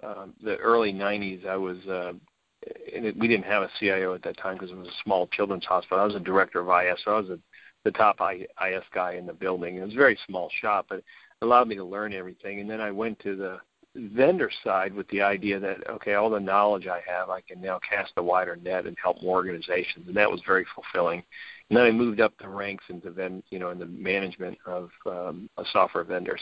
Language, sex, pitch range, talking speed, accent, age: English, male, 90-100 Hz, 240 wpm, American, 50-69